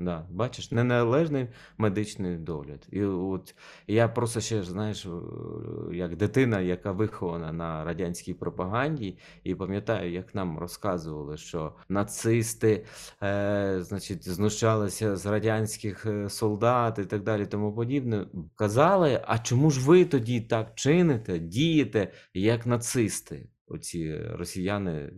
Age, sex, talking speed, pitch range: 30-49, male, 115 wpm, 85-115 Hz